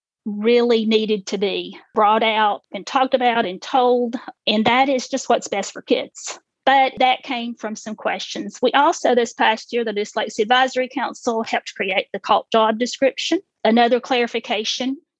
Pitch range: 215-255 Hz